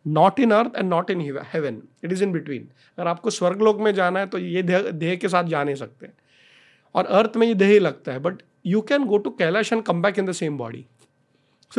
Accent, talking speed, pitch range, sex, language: native, 240 wpm, 150-200 Hz, male, Hindi